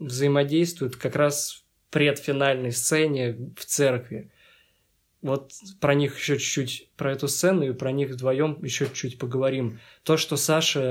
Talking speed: 145 wpm